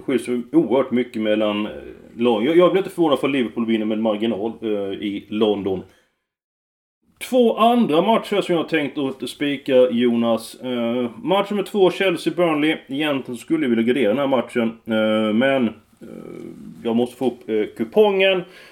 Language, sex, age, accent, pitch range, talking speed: Swedish, male, 30-49, native, 115-155 Hz, 160 wpm